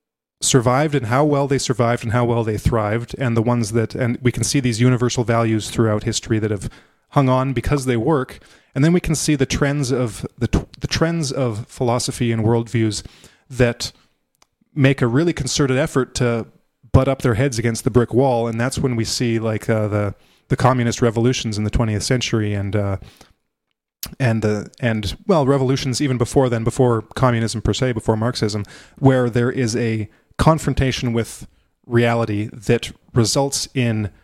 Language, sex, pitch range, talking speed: English, male, 110-135 Hz, 180 wpm